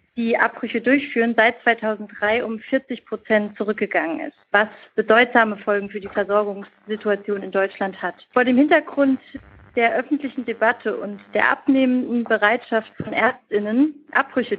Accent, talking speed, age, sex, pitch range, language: German, 130 wpm, 40-59, female, 210-260 Hz, German